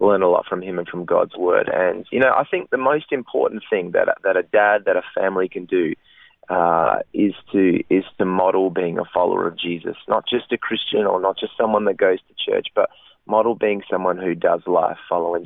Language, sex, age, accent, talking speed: English, male, 20-39, Australian, 225 wpm